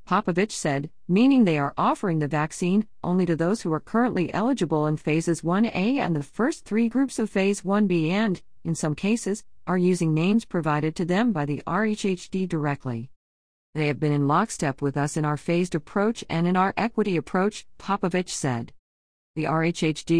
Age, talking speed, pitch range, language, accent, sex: 50-69, 180 wpm, 150-205 Hz, English, American, female